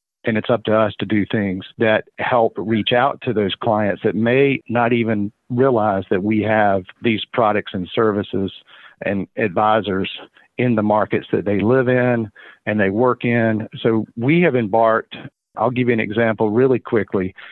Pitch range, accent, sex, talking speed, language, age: 100-120 Hz, American, male, 175 wpm, English, 50-69